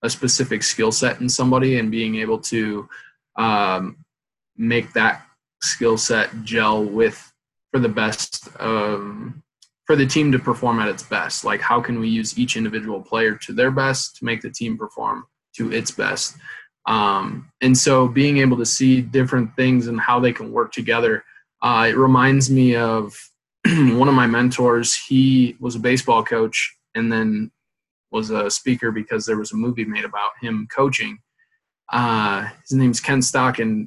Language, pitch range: English, 115-130 Hz